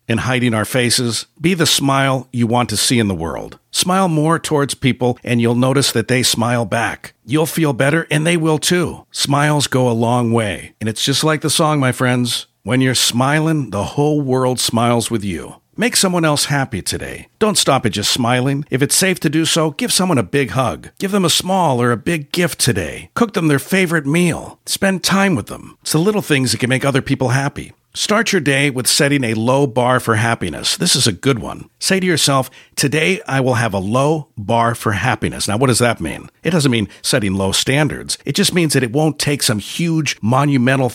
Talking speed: 220 wpm